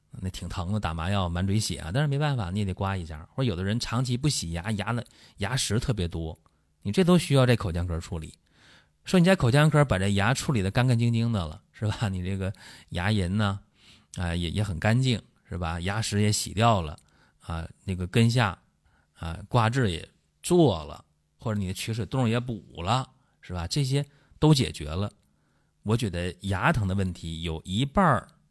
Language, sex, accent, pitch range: Chinese, male, native, 90-135 Hz